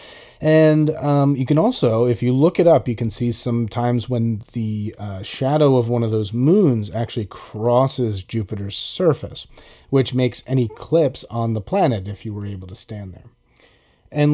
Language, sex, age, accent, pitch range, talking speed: English, male, 30-49, American, 110-140 Hz, 180 wpm